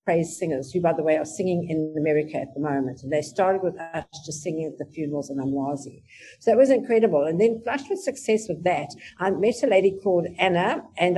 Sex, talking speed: female, 230 wpm